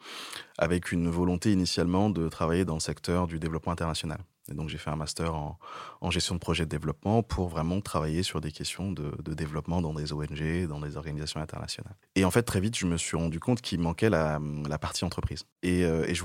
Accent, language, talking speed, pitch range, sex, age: French, French, 220 wpm, 80-95 Hz, male, 20-39